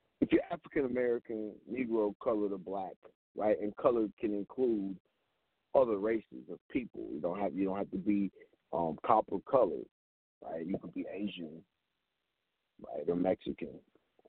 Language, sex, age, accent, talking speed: English, male, 50-69, American, 150 wpm